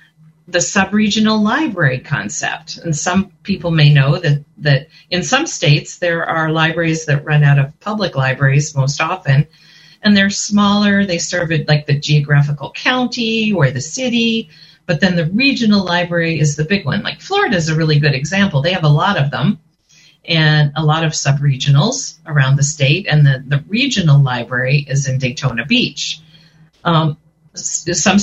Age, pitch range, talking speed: 40-59, 145-180 Hz, 170 wpm